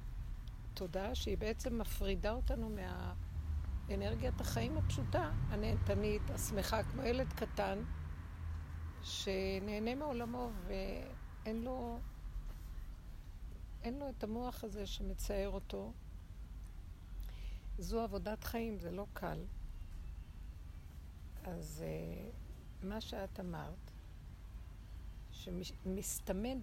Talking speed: 80 wpm